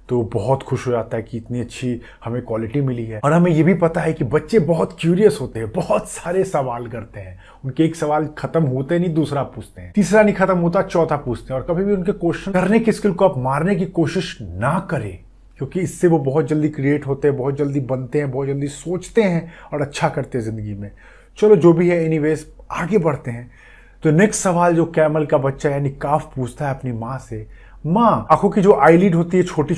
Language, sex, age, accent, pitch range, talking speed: Hindi, male, 30-49, native, 125-165 Hz, 230 wpm